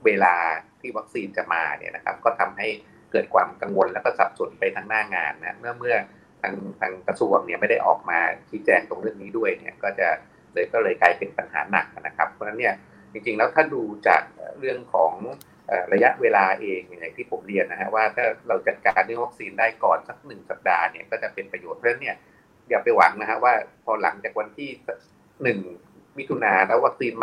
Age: 30-49